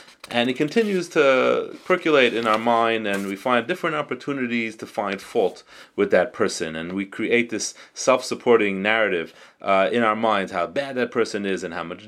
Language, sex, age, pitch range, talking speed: English, male, 30-49, 110-160 Hz, 185 wpm